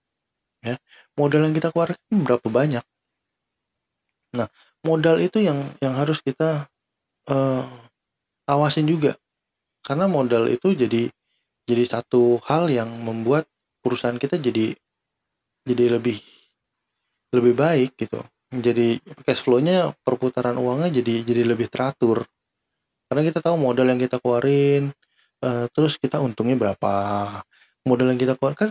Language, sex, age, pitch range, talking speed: Indonesian, male, 20-39, 125-155 Hz, 125 wpm